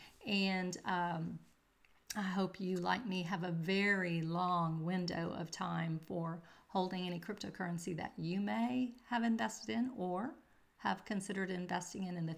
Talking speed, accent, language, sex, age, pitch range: 150 wpm, American, English, female, 40-59, 175-210 Hz